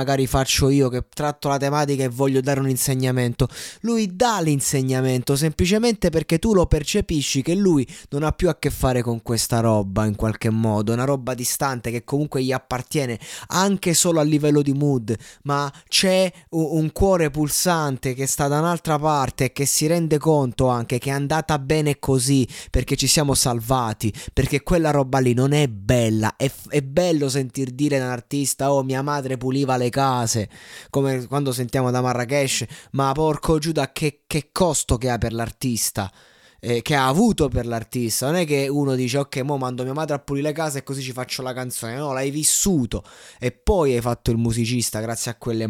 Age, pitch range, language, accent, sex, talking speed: 20-39, 120-150 Hz, Italian, native, male, 195 wpm